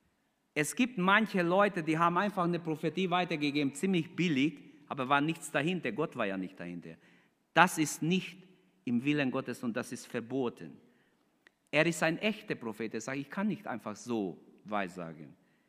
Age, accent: 50-69, German